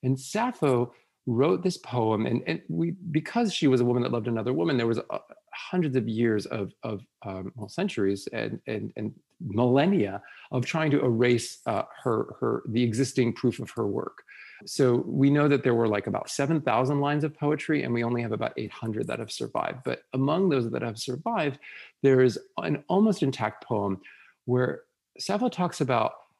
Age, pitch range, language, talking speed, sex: 40-59, 115-145 Hz, English, 190 wpm, male